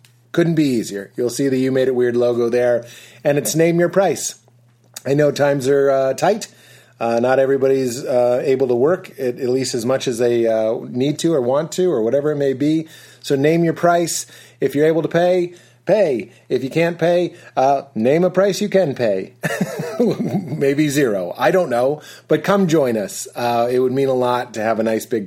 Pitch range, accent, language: 115-145 Hz, American, English